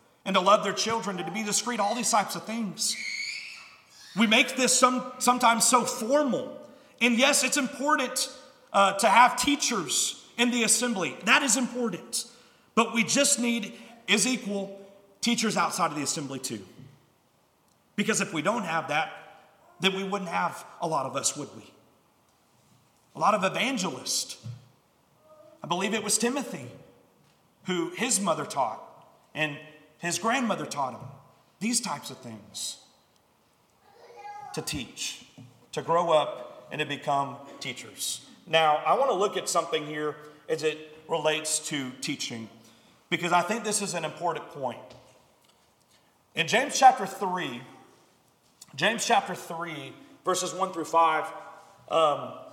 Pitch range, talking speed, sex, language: 155-230 Hz, 145 wpm, male, English